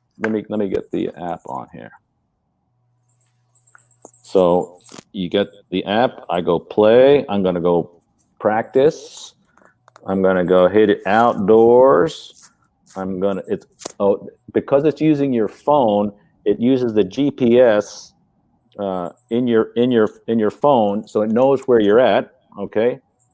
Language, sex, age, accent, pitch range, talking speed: English, male, 40-59, American, 100-125 Hz, 140 wpm